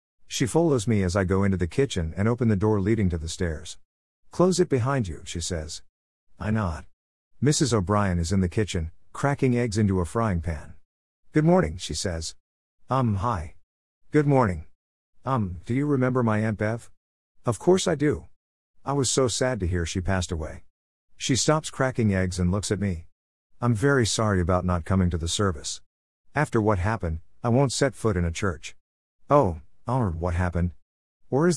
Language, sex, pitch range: English, male, 85-120 Hz